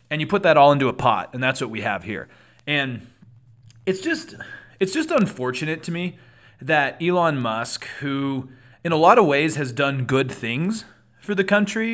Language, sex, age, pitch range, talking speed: English, male, 30-49, 125-165 Hz, 190 wpm